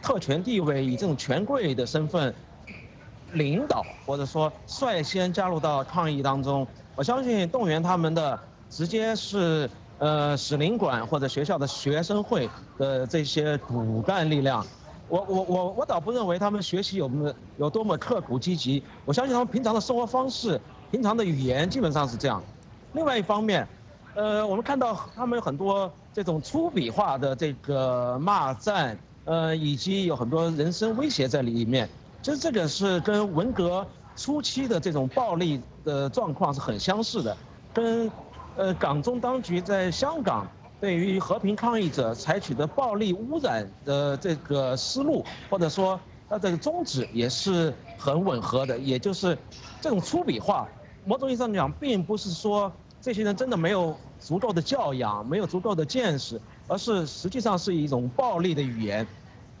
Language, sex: English, male